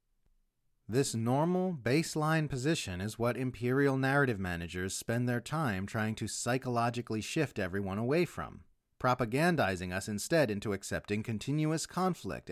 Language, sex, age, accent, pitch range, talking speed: English, male, 30-49, American, 105-150 Hz, 125 wpm